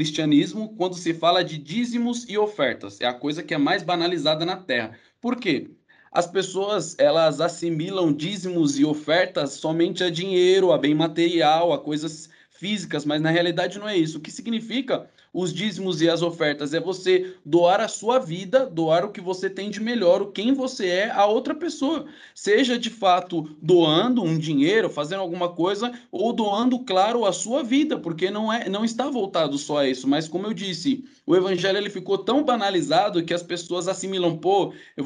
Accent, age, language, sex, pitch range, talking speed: Brazilian, 20-39, Portuguese, male, 170-230 Hz, 185 wpm